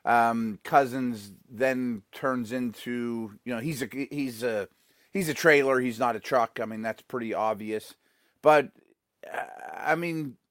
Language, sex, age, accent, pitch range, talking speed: English, male, 30-49, American, 130-175 Hz, 155 wpm